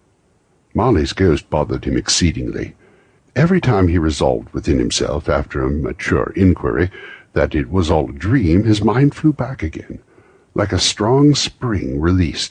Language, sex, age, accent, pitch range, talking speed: English, male, 60-79, American, 75-105 Hz, 150 wpm